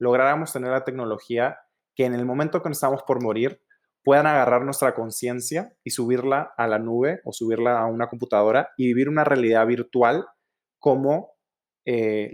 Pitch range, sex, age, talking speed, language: 115-140 Hz, male, 20-39, 165 wpm, Spanish